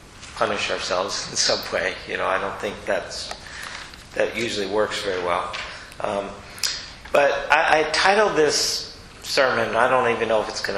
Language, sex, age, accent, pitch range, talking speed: English, male, 40-59, American, 100-120 Hz, 165 wpm